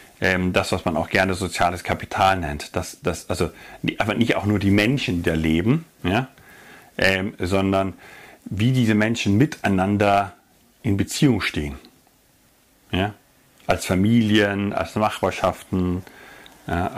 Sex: male